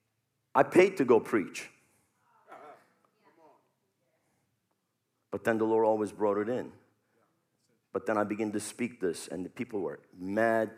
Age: 50-69